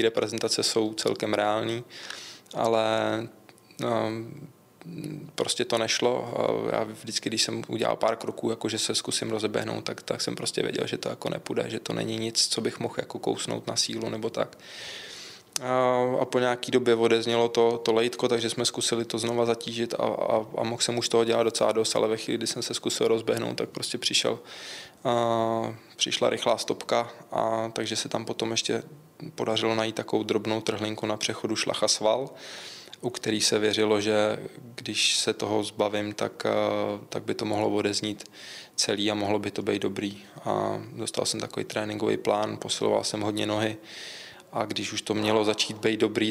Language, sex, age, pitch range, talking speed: Czech, male, 20-39, 110-115 Hz, 180 wpm